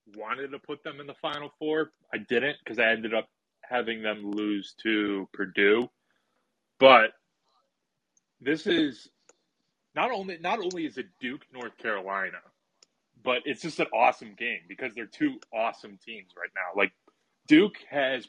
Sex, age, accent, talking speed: male, 20-39, American, 155 wpm